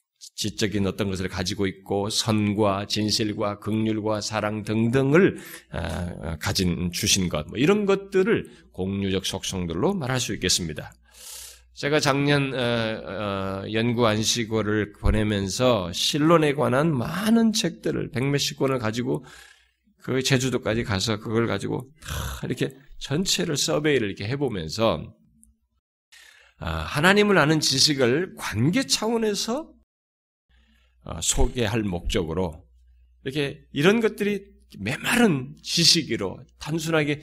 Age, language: 20-39, Korean